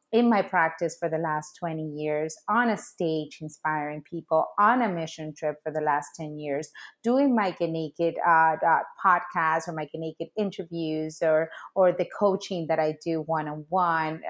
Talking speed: 175 wpm